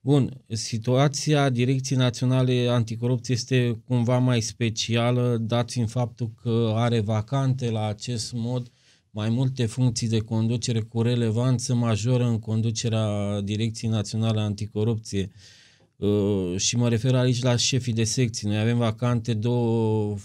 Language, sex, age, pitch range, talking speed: Romanian, male, 20-39, 110-120 Hz, 130 wpm